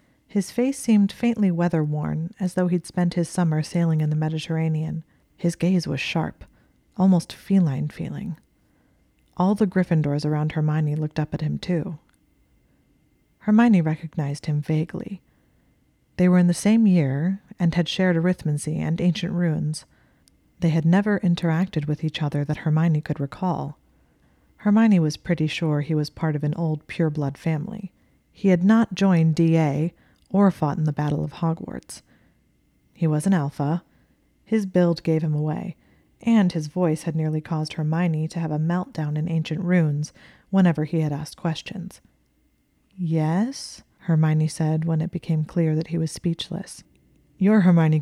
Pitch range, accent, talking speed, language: 155-180 Hz, American, 155 wpm, English